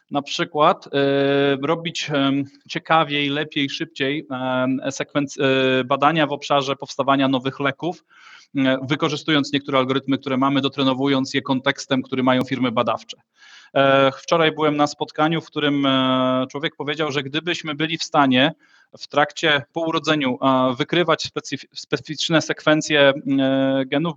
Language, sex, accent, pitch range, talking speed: Polish, male, native, 140-165 Hz, 110 wpm